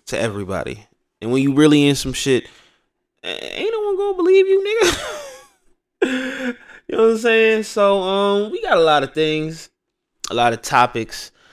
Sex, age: male, 20-39